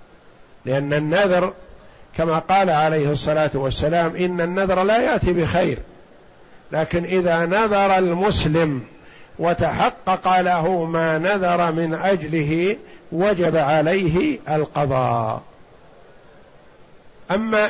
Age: 50-69